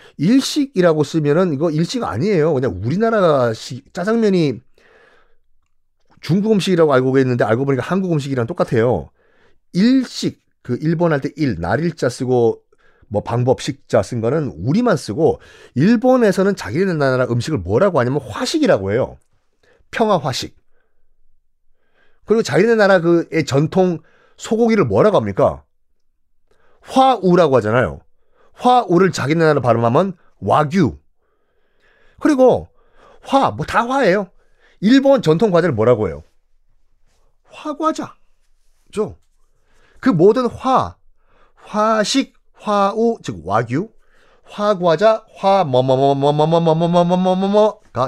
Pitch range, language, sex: 130-215 Hz, Korean, male